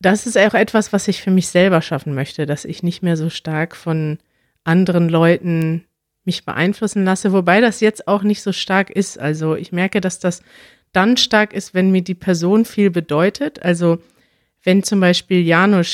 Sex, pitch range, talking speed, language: female, 165-200 Hz, 190 wpm, German